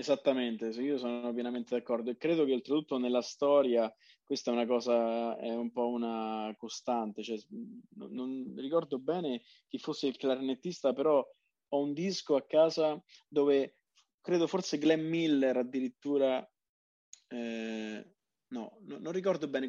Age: 20-39